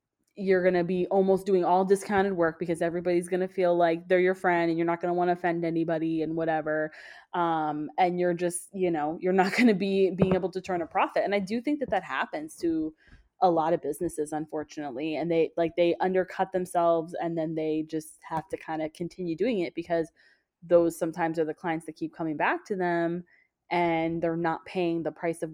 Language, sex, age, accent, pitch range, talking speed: English, female, 20-39, American, 160-190 Hz, 225 wpm